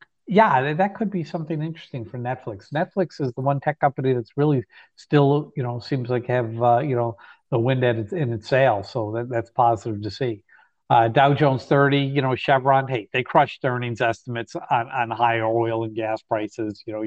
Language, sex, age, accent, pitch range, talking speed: English, male, 50-69, American, 115-135 Hz, 210 wpm